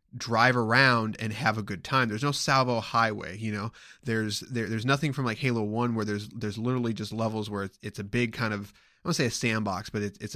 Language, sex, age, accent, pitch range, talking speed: English, male, 20-39, American, 110-135 Hz, 255 wpm